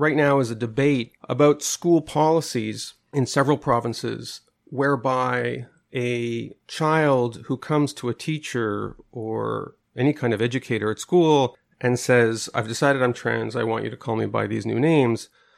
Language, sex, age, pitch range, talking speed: English, male, 40-59, 115-140 Hz, 160 wpm